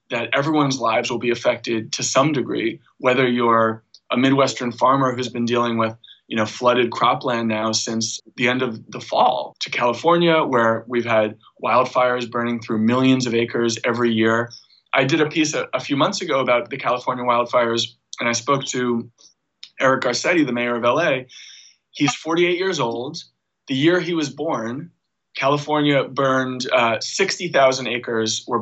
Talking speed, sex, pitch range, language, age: 170 wpm, male, 120-150 Hz, English, 20-39